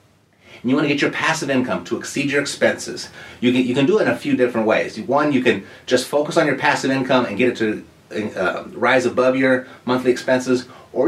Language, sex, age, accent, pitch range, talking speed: English, male, 30-49, American, 115-145 Hz, 225 wpm